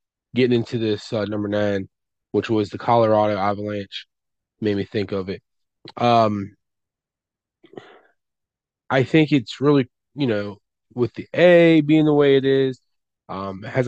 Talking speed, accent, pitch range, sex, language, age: 145 wpm, American, 105-145 Hz, male, English, 20-39